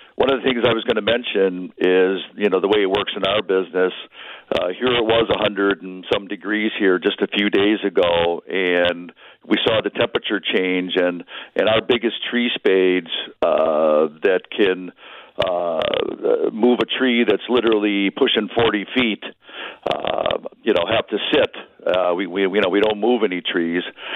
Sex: male